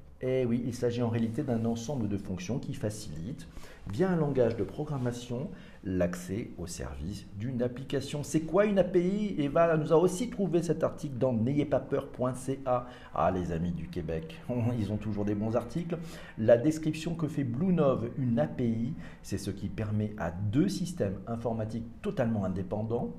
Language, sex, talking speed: French, male, 165 wpm